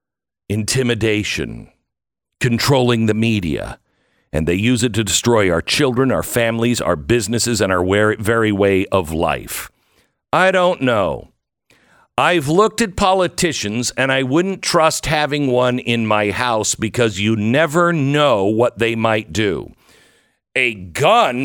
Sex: male